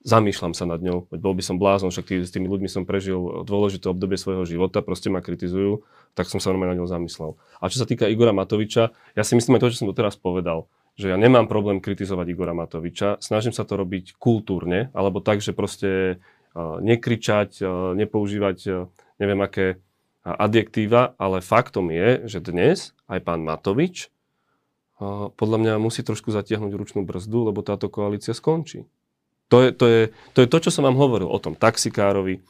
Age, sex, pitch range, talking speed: 30-49, male, 95-120 Hz, 180 wpm